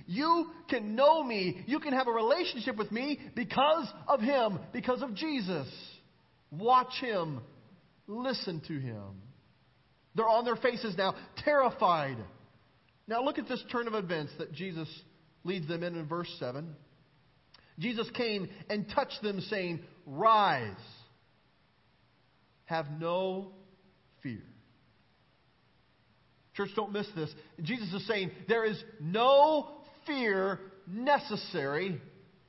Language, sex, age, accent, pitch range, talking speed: English, male, 40-59, American, 185-280 Hz, 120 wpm